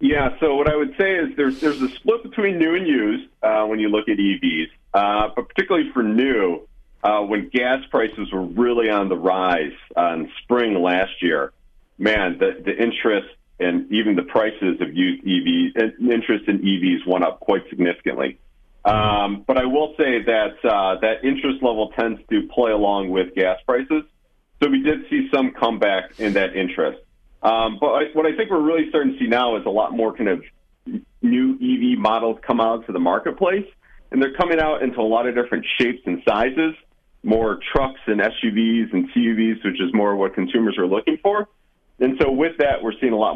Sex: male